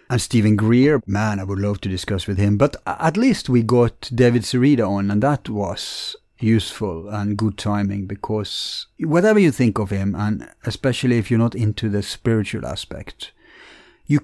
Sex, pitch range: male, 110-150 Hz